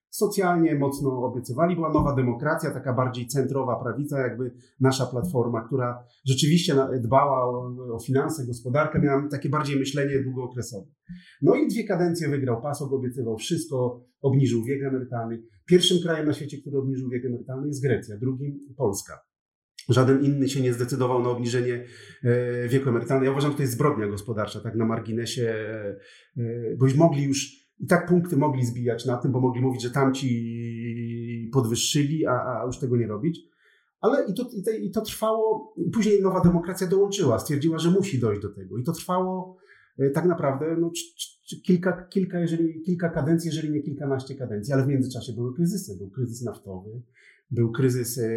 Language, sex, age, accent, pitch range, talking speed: Polish, male, 40-59, native, 120-160 Hz, 160 wpm